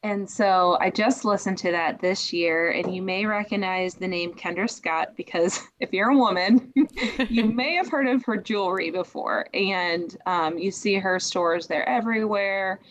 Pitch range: 180-215 Hz